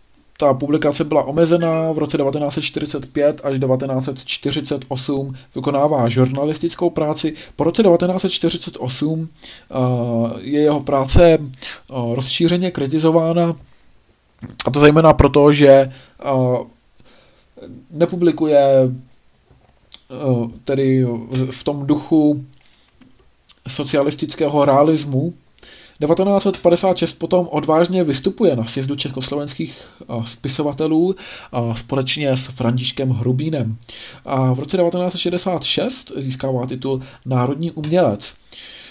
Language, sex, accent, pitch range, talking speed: Czech, male, native, 130-165 Hz, 80 wpm